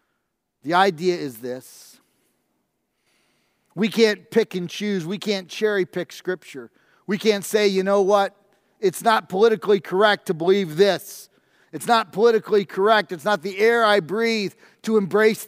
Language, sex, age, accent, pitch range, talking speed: English, male, 40-59, American, 165-215 Hz, 150 wpm